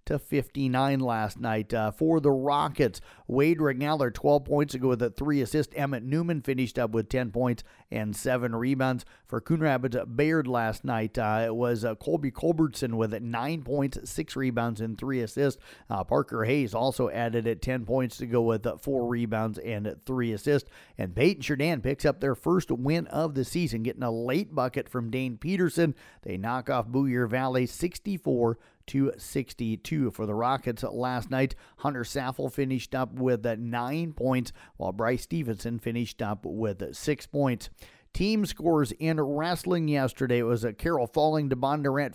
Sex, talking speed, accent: male, 175 wpm, American